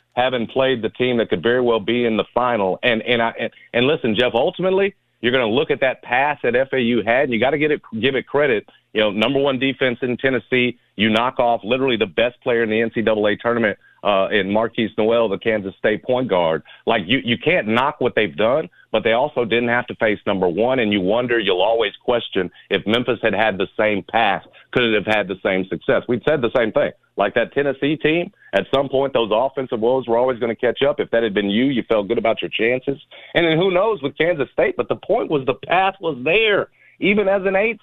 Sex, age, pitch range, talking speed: male, 50-69, 110-130 Hz, 245 wpm